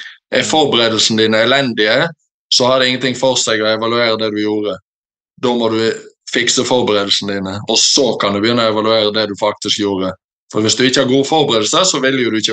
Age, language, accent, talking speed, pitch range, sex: 20-39, English, Norwegian, 200 wpm, 110-125 Hz, male